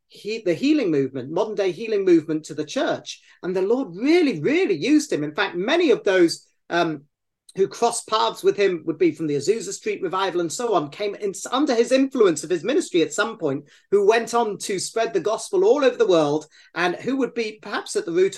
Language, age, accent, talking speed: English, 40-59, British, 225 wpm